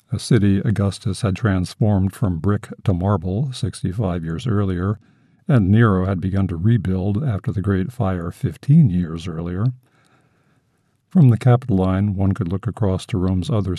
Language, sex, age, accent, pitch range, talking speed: English, male, 50-69, American, 95-115 Hz, 155 wpm